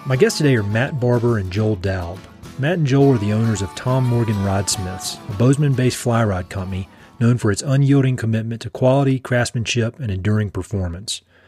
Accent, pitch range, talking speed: American, 100-120 Hz, 190 wpm